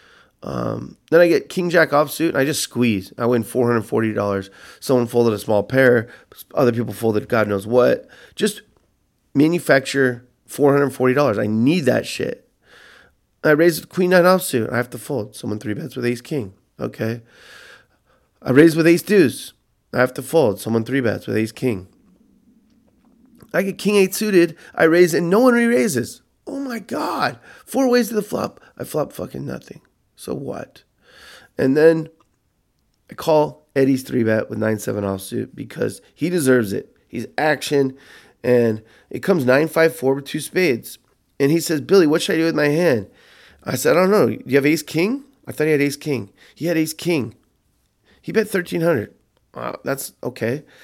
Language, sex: English, male